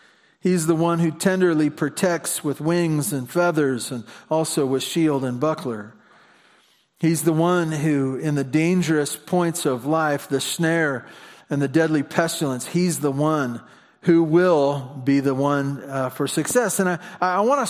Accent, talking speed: American, 165 wpm